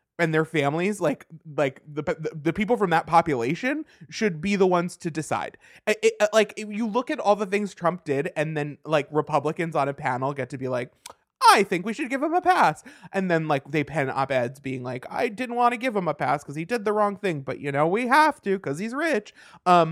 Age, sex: 20-39, male